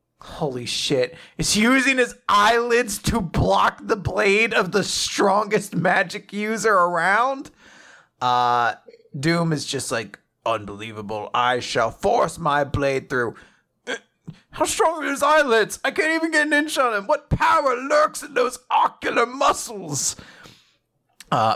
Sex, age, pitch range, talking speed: male, 30-49, 155-250 Hz, 135 wpm